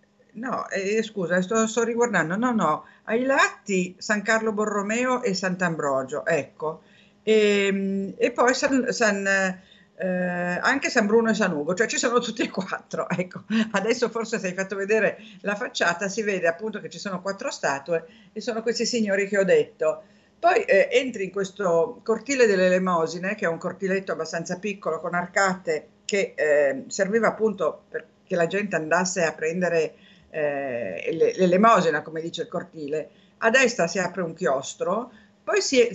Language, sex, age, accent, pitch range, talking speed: Italian, female, 50-69, native, 175-230 Hz, 165 wpm